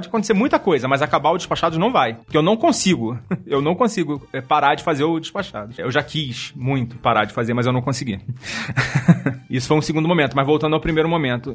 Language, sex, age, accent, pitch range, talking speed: Portuguese, male, 30-49, Brazilian, 130-165 Hz, 225 wpm